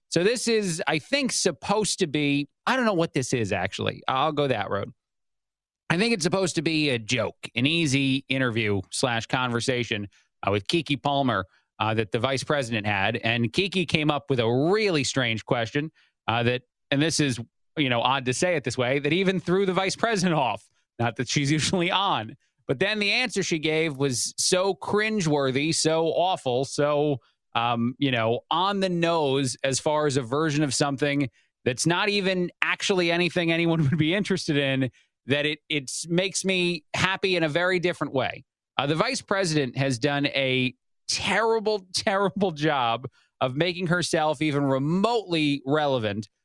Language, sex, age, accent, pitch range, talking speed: English, male, 30-49, American, 130-170 Hz, 180 wpm